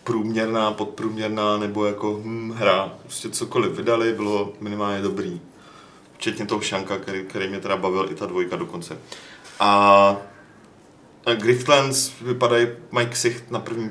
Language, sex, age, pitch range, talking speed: Czech, male, 30-49, 105-120 Hz, 140 wpm